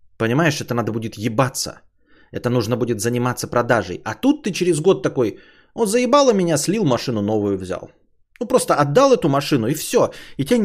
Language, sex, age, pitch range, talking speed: Bulgarian, male, 20-39, 105-160 Hz, 180 wpm